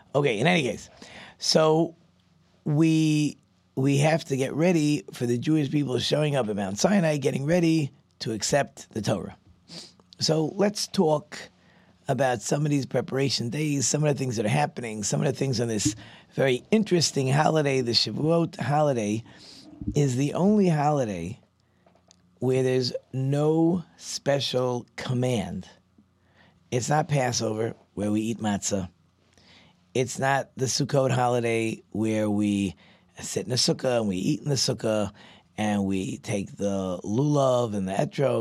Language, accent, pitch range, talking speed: English, American, 105-150 Hz, 150 wpm